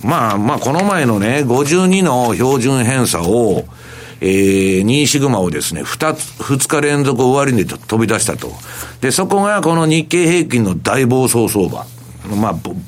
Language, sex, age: Japanese, male, 60-79